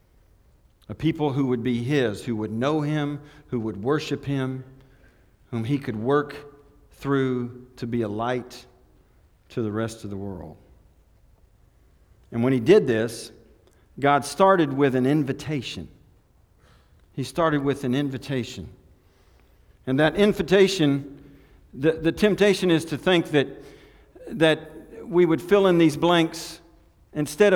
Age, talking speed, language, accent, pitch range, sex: 50-69, 135 wpm, English, American, 115-155 Hz, male